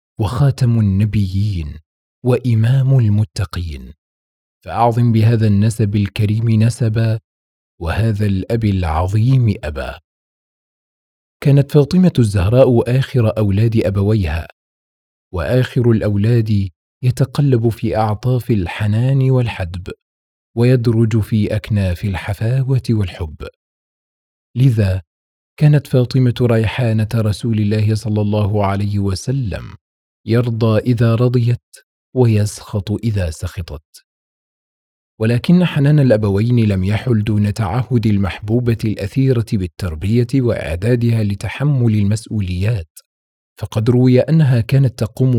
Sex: male